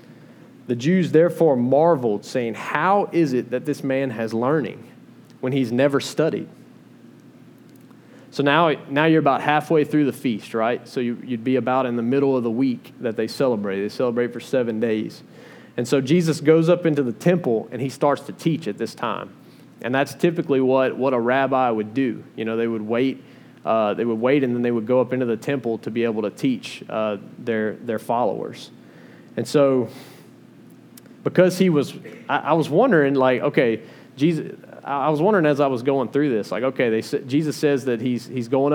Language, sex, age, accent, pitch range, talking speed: English, male, 30-49, American, 120-145 Hz, 200 wpm